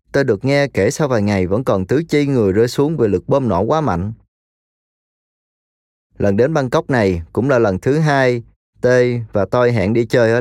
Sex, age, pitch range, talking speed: male, 20-39, 100-130 Hz, 210 wpm